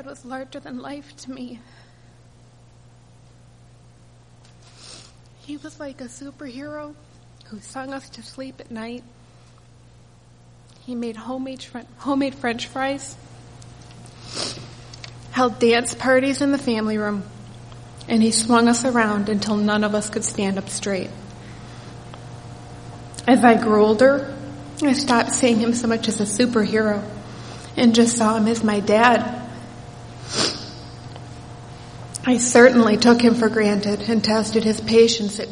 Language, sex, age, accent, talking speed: English, female, 30-49, American, 130 wpm